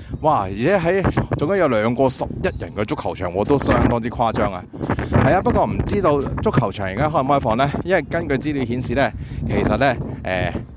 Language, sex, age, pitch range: Chinese, male, 30-49, 110-140 Hz